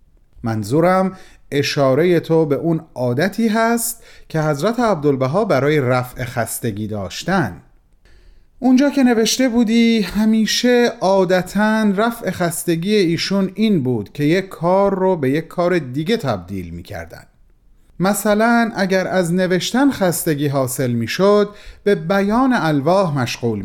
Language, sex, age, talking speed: Persian, male, 30-49, 115 wpm